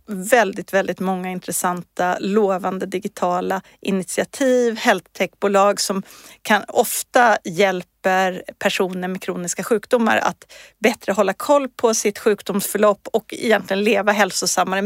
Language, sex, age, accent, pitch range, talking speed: Swedish, female, 40-59, native, 190-230 Hz, 110 wpm